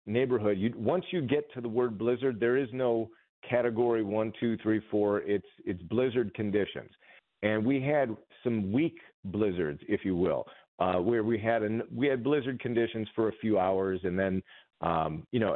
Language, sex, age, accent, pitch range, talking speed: English, male, 40-59, American, 100-125 Hz, 185 wpm